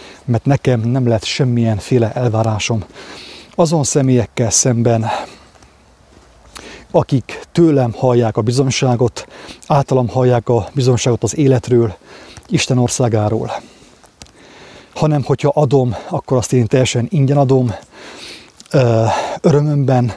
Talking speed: 100 wpm